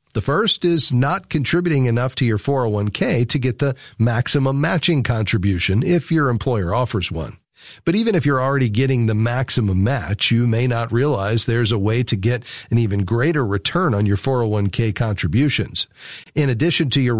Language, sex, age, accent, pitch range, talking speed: English, male, 40-59, American, 110-140 Hz, 175 wpm